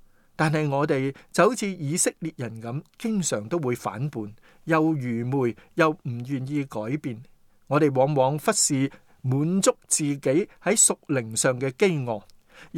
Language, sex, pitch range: Chinese, male, 125-170 Hz